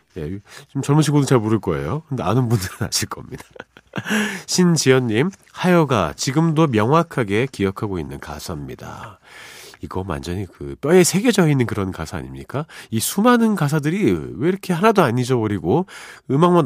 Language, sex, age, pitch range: Korean, male, 40-59, 100-160 Hz